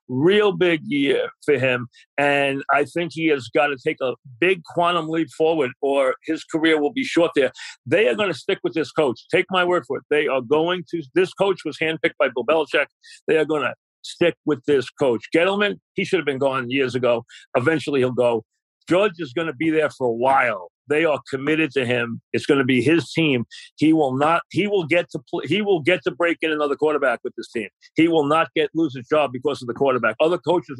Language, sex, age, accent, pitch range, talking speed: English, male, 50-69, American, 140-175 Hz, 235 wpm